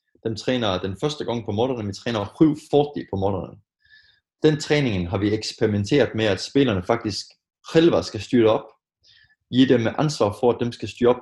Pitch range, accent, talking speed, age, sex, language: 100-125 Hz, Danish, 185 wpm, 20-39, male, Swedish